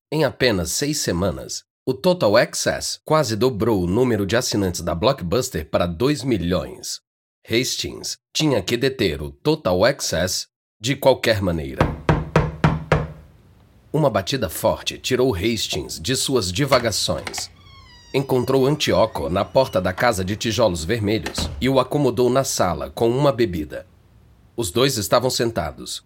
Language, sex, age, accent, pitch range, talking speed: Portuguese, male, 40-59, Brazilian, 90-130 Hz, 130 wpm